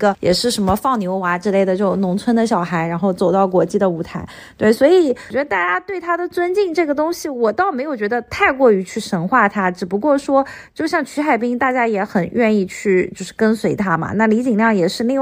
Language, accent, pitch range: Chinese, native, 205-280 Hz